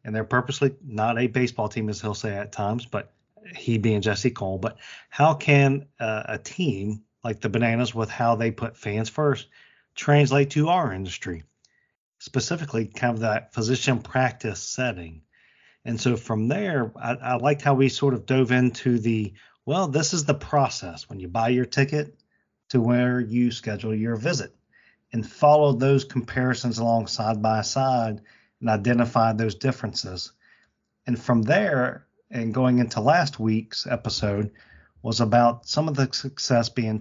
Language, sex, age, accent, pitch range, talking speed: English, male, 40-59, American, 110-130 Hz, 165 wpm